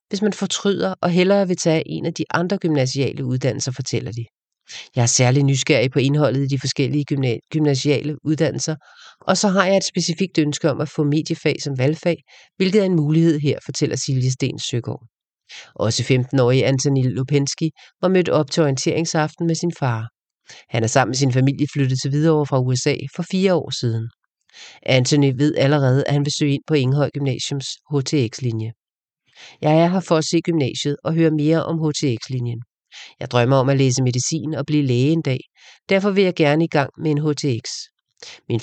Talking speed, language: 190 wpm, English